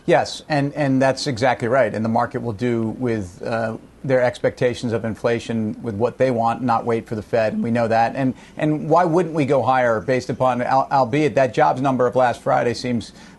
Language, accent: English, American